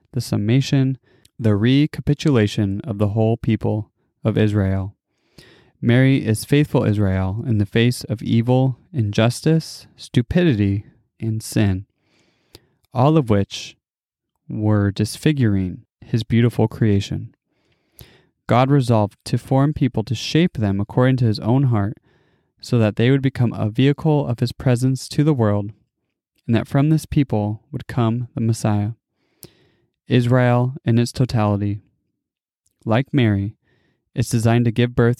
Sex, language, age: male, English, 20-39